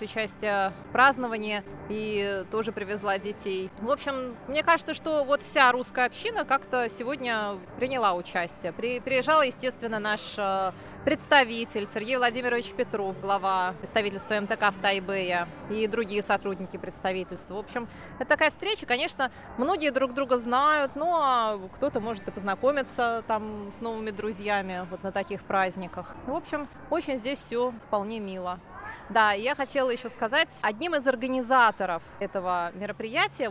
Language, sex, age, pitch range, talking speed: Russian, female, 20-39, 190-250 Hz, 140 wpm